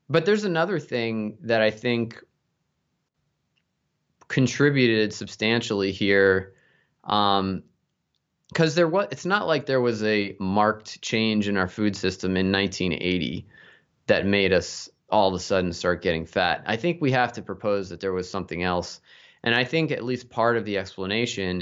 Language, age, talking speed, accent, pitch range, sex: English, 20-39, 160 wpm, American, 95-115 Hz, male